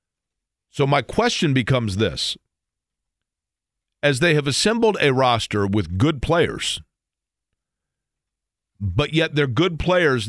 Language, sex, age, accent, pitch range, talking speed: English, male, 50-69, American, 115-145 Hz, 110 wpm